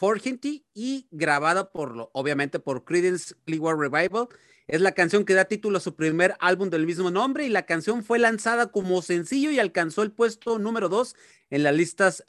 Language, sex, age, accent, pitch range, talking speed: Spanish, male, 40-59, Mexican, 160-225 Hz, 185 wpm